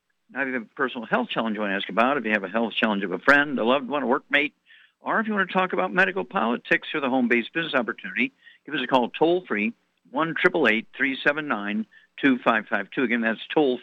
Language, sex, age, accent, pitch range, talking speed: English, male, 60-79, American, 115-160 Hz, 220 wpm